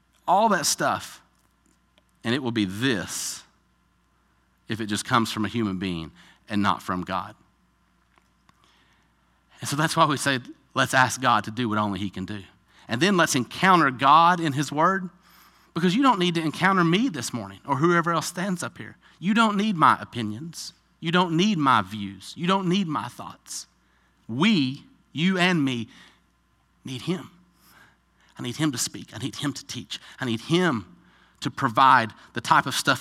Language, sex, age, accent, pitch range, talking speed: English, male, 40-59, American, 115-175 Hz, 180 wpm